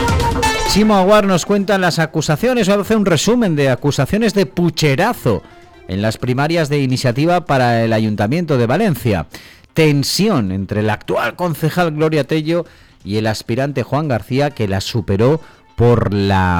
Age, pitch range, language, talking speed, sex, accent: 40-59, 105-160 Hz, Spanish, 150 wpm, male, Spanish